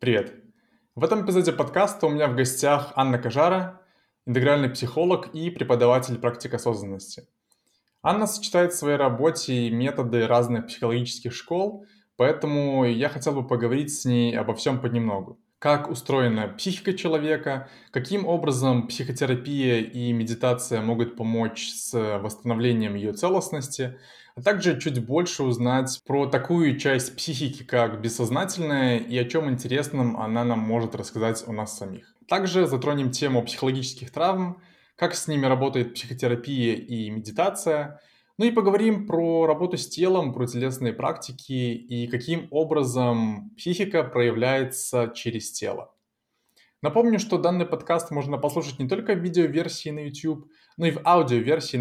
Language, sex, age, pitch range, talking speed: Russian, male, 20-39, 120-165 Hz, 135 wpm